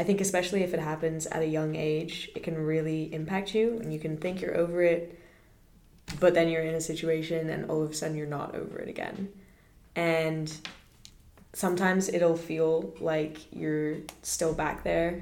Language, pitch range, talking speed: English, 155-175 Hz, 185 wpm